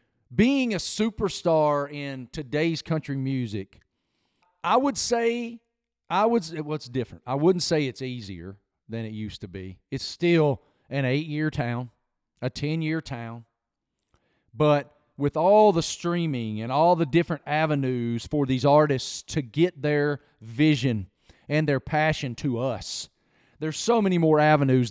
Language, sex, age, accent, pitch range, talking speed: English, male, 40-59, American, 130-170 Hz, 140 wpm